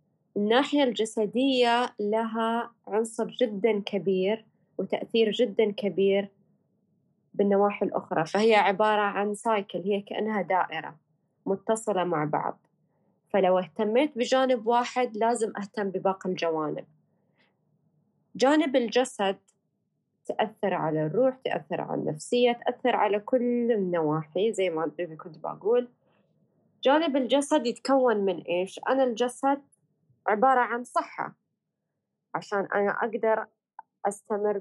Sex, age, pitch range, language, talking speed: female, 20-39, 190-245 Hz, Arabic, 100 wpm